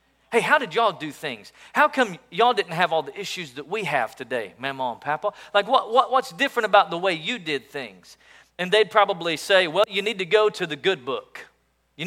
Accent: American